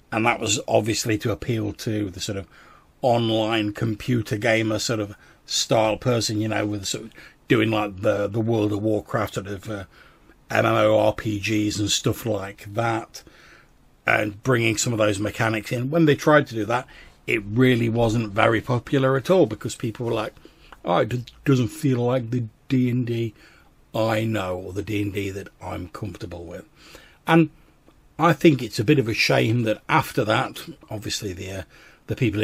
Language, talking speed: English, 185 wpm